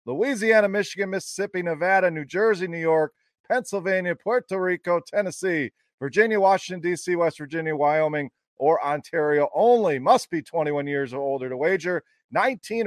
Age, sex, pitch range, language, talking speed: 40-59, male, 155-200 Hz, English, 140 wpm